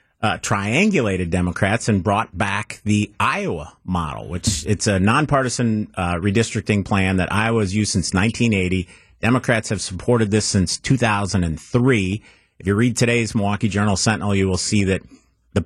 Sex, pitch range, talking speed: male, 95-115 Hz, 150 wpm